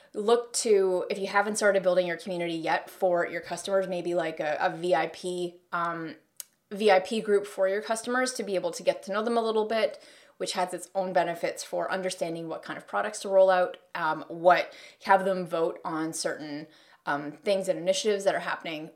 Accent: American